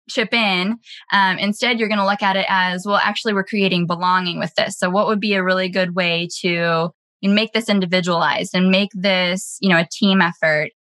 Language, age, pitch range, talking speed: English, 10-29, 175-215 Hz, 210 wpm